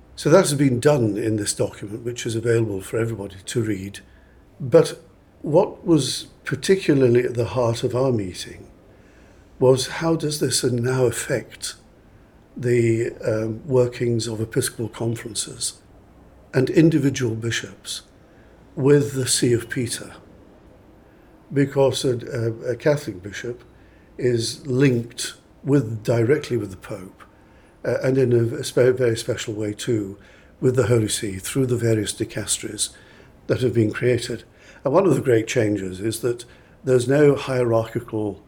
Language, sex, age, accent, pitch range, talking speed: English, male, 50-69, British, 105-130 Hz, 140 wpm